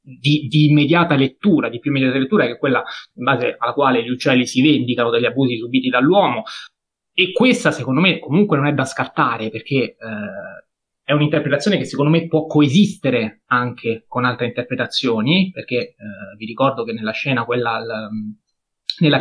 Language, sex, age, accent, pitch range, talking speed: Italian, male, 30-49, native, 125-165 Hz, 170 wpm